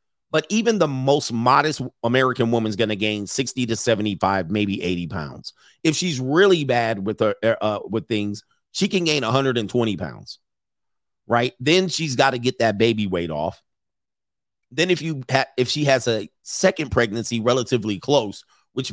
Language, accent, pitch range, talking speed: English, American, 115-150 Hz, 170 wpm